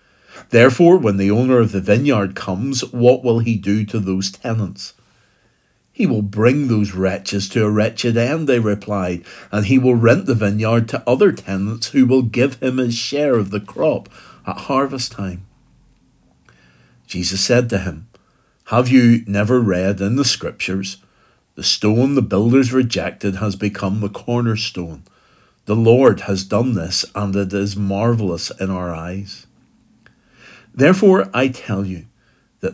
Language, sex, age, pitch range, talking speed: English, male, 50-69, 100-120 Hz, 155 wpm